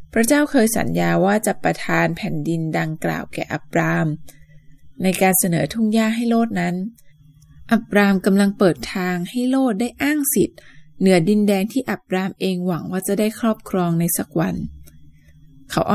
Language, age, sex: Thai, 20-39, female